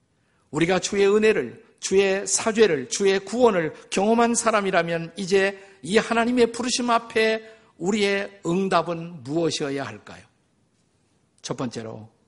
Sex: male